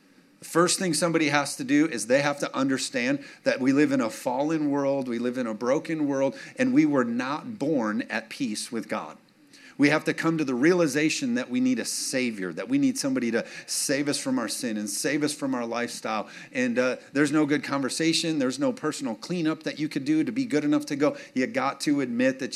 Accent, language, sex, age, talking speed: American, English, male, 50-69, 230 wpm